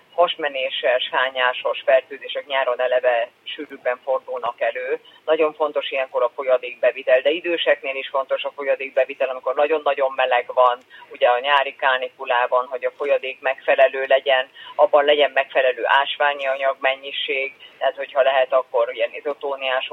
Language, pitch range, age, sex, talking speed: Hungarian, 135-160 Hz, 30-49, female, 130 wpm